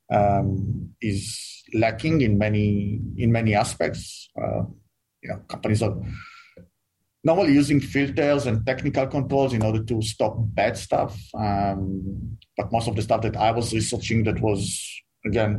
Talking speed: 145 wpm